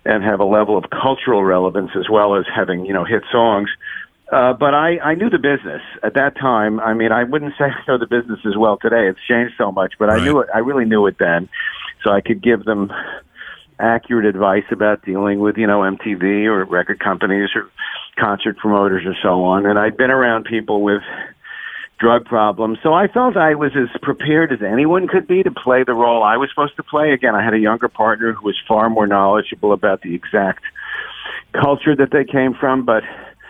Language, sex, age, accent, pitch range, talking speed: English, male, 50-69, American, 105-140 Hz, 215 wpm